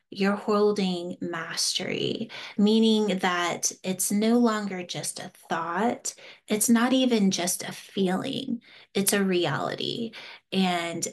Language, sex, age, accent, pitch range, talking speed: English, female, 30-49, American, 180-225 Hz, 115 wpm